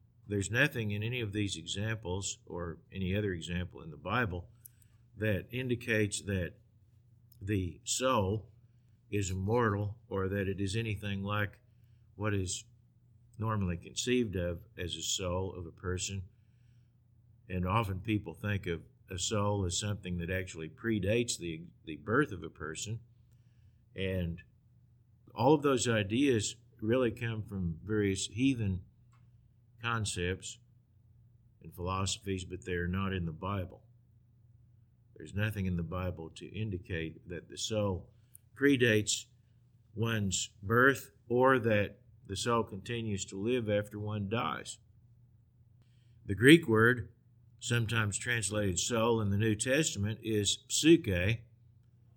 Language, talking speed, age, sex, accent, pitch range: English, 130 wpm, 50-69, male, American, 100-120 Hz